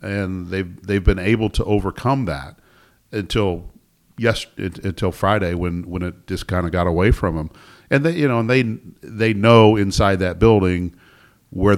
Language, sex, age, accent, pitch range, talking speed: English, male, 50-69, American, 85-100 Hz, 180 wpm